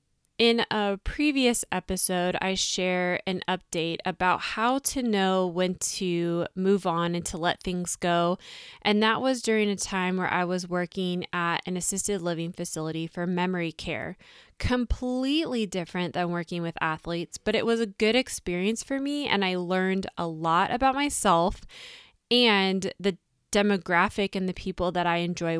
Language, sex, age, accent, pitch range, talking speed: English, female, 20-39, American, 175-210 Hz, 160 wpm